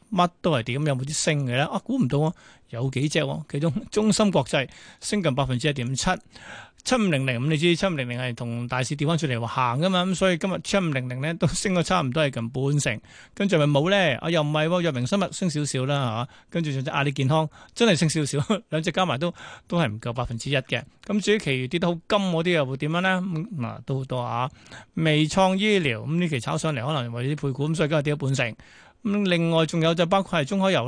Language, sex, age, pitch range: Chinese, male, 20-39, 135-175 Hz